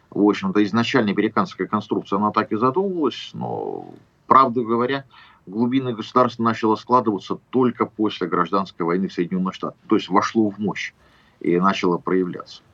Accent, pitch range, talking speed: native, 95-120 Hz, 145 wpm